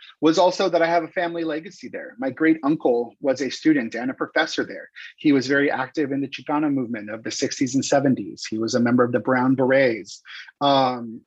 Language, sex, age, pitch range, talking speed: English, male, 30-49, 125-160 Hz, 220 wpm